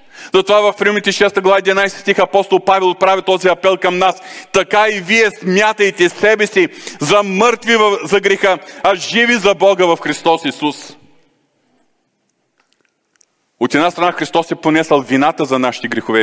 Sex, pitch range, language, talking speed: male, 115-185 Hz, Bulgarian, 150 wpm